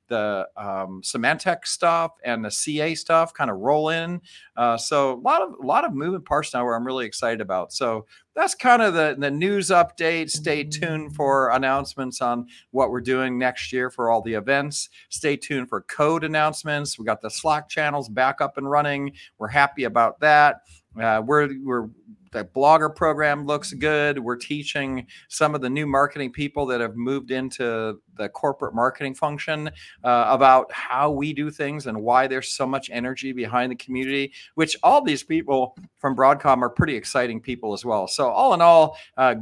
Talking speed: 190 wpm